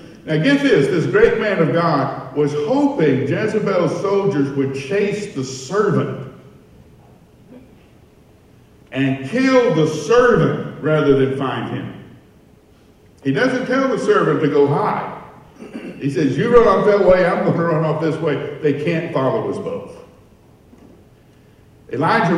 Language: English